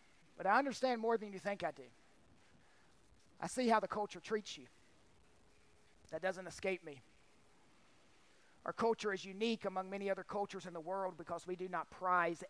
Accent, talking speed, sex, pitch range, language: American, 175 wpm, male, 165-230 Hz, English